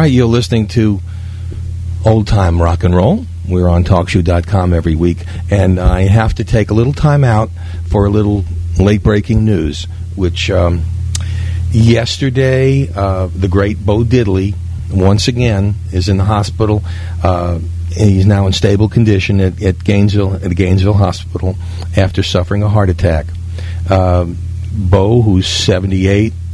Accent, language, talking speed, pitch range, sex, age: American, English, 145 wpm, 90-105 Hz, male, 50-69